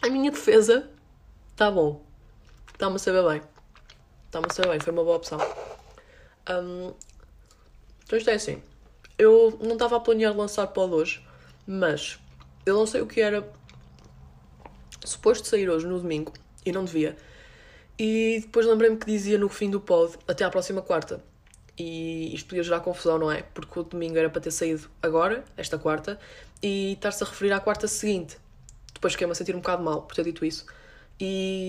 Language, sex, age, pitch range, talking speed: Portuguese, female, 20-39, 155-210 Hz, 180 wpm